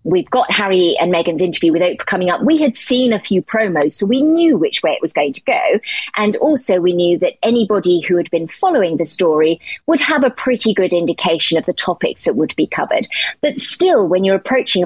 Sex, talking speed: female, 225 wpm